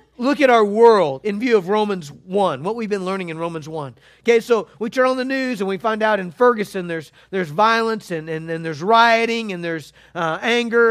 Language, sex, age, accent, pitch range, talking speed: English, male, 50-69, American, 200-270 Hz, 225 wpm